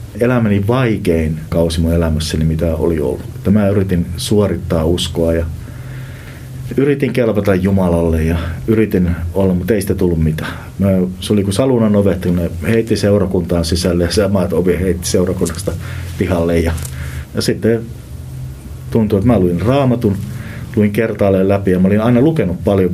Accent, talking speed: native, 150 wpm